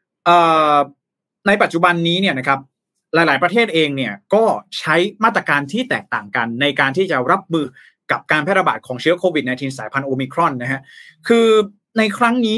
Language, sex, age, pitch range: Thai, male, 20-39, 140-185 Hz